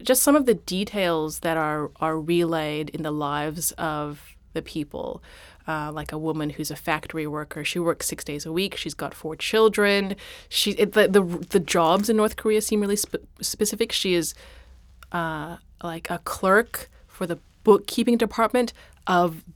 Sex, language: female, English